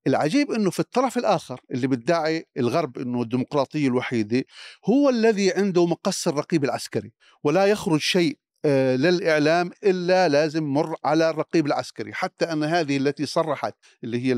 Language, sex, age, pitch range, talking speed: Arabic, male, 50-69, 135-175 Hz, 140 wpm